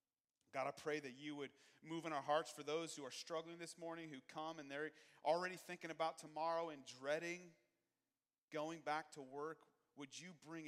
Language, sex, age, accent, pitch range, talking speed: English, male, 40-59, American, 140-175 Hz, 190 wpm